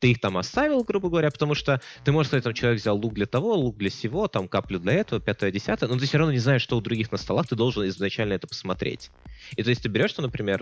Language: Russian